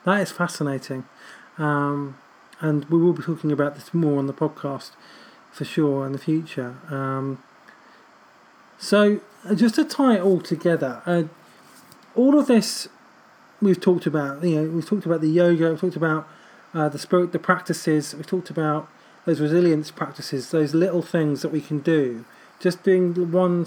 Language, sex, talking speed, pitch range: English, male, 165 wpm, 150-180 Hz